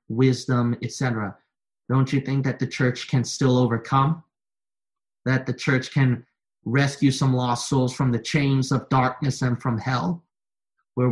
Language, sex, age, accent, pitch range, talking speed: English, male, 30-49, American, 120-135 Hz, 150 wpm